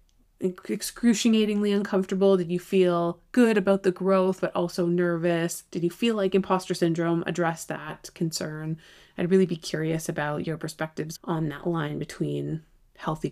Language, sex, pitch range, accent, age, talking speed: English, female, 165-195 Hz, American, 30-49, 150 wpm